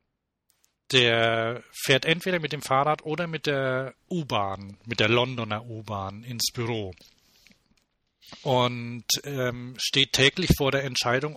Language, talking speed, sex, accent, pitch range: German, 120 wpm, male, German, 120-150 Hz